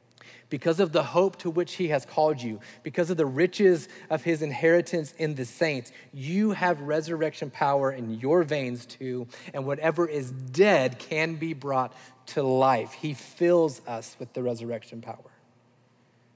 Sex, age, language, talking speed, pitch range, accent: male, 40-59, English, 160 wpm, 120-150 Hz, American